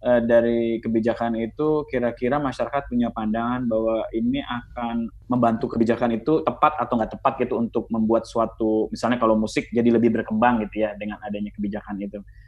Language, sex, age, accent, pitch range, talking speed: Indonesian, male, 20-39, native, 110-130 Hz, 160 wpm